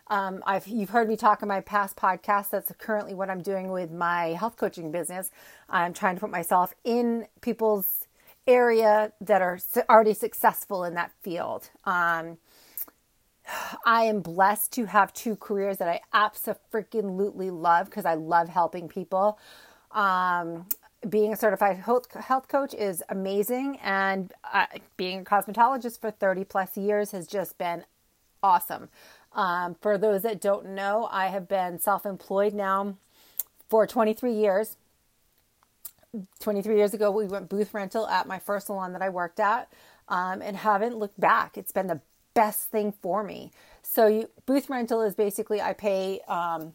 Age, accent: 40-59, American